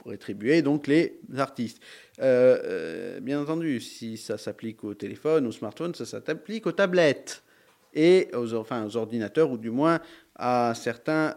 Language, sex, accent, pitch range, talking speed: French, male, French, 120-155 Hz, 160 wpm